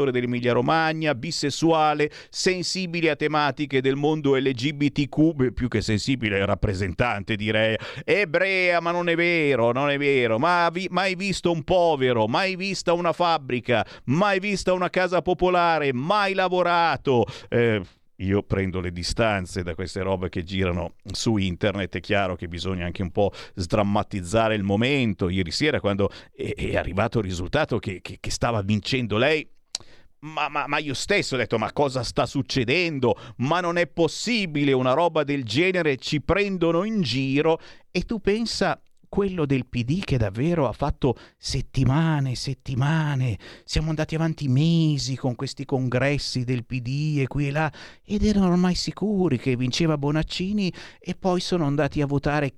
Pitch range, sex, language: 115-170 Hz, male, Italian